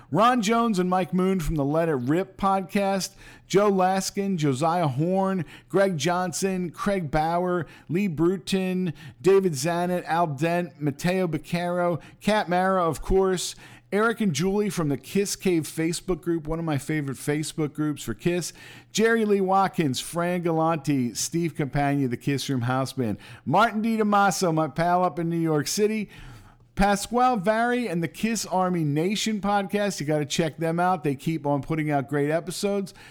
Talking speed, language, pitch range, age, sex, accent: 165 wpm, English, 145-185 Hz, 50-69, male, American